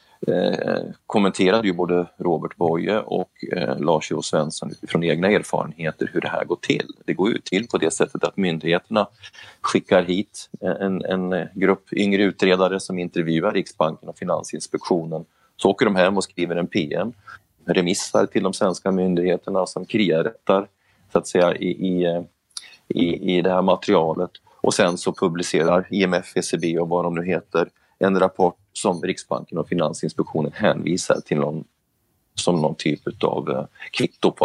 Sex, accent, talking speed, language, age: male, native, 160 wpm, Swedish, 30-49